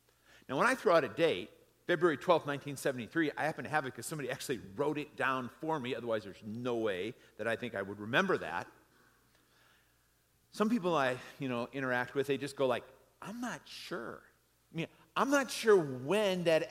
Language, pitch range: English, 135-180 Hz